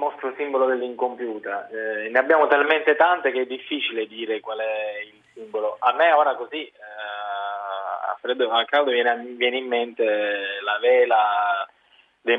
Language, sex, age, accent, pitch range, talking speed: Italian, male, 20-39, native, 115-150 Hz, 155 wpm